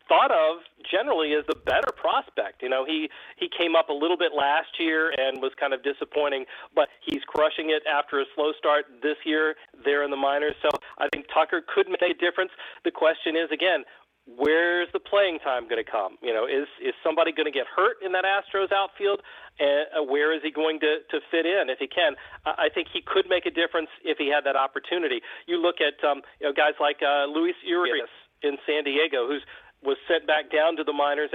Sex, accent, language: male, American, English